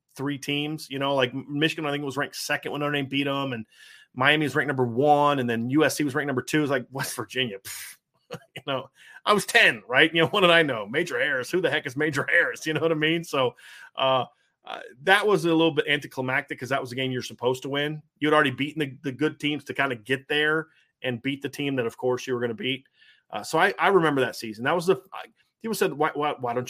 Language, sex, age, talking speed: English, male, 30-49, 270 wpm